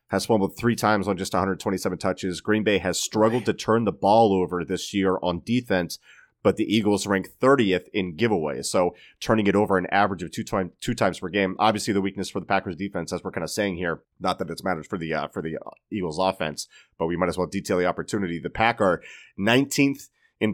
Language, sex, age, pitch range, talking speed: English, male, 30-49, 95-110 Hz, 225 wpm